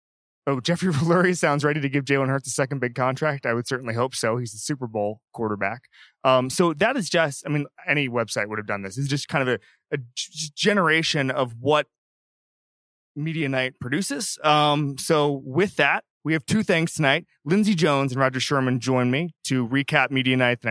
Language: English